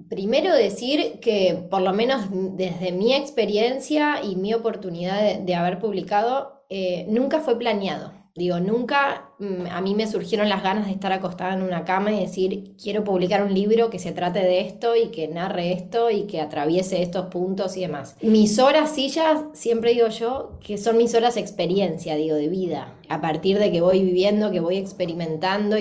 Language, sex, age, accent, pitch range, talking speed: Spanish, female, 20-39, Argentinian, 180-225 Hz, 190 wpm